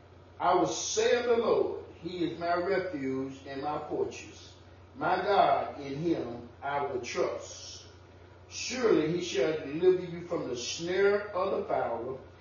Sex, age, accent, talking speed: female, 30-49, American, 150 wpm